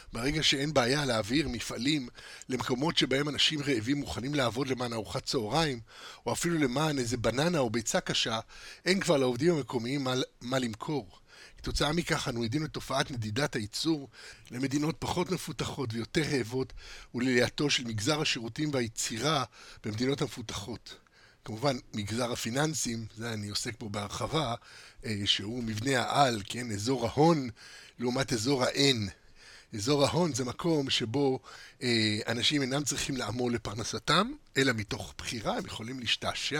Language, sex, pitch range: Hebrew, male, 115-150 Hz